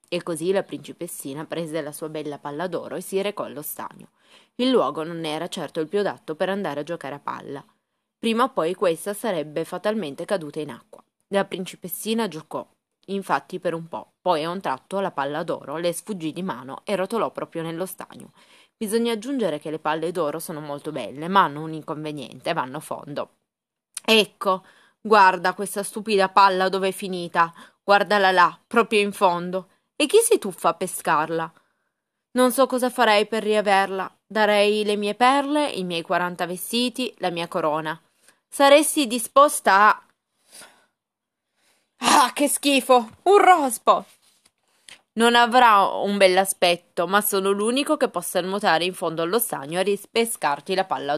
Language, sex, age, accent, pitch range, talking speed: Italian, female, 20-39, native, 170-220 Hz, 165 wpm